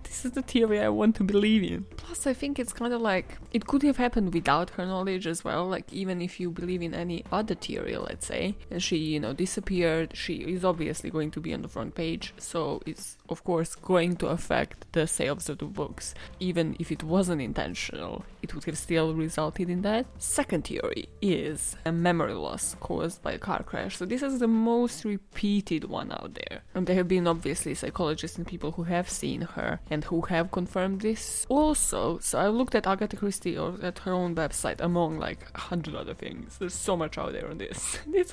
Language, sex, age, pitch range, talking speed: English, female, 20-39, 170-210 Hz, 215 wpm